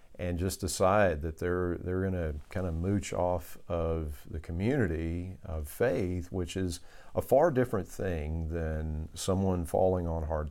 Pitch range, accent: 80-100 Hz, American